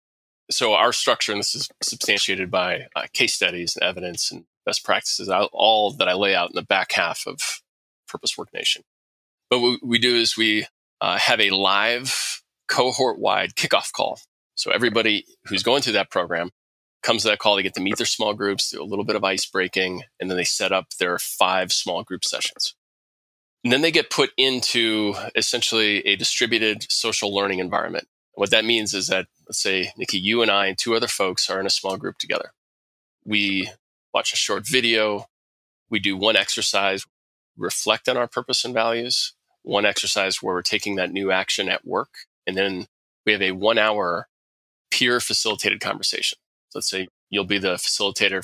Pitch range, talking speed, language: 95-115 Hz, 185 wpm, English